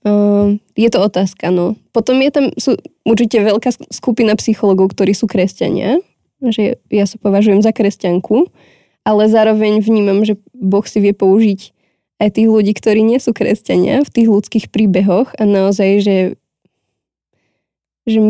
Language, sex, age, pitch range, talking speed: Slovak, female, 20-39, 195-225 Hz, 150 wpm